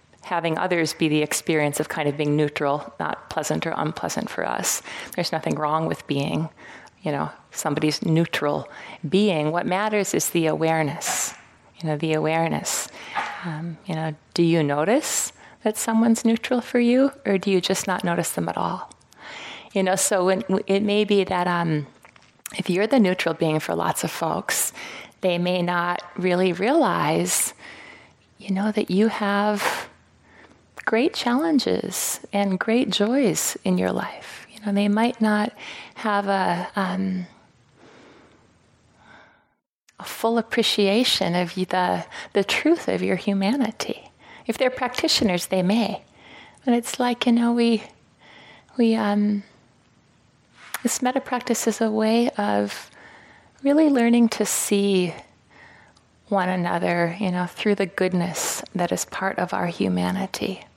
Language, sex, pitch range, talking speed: English, female, 165-225 Hz, 140 wpm